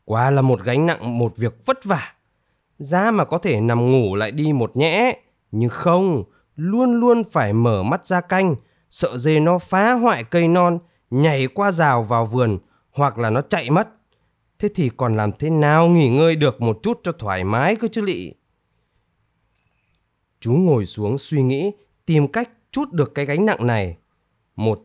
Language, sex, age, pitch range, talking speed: Vietnamese, male, 20-39, 120-185 Hz, 185 wpm